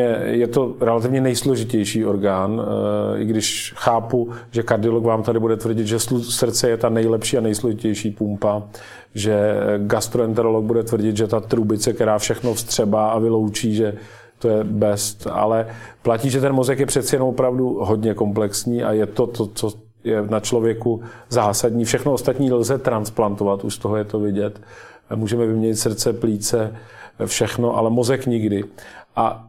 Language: Czech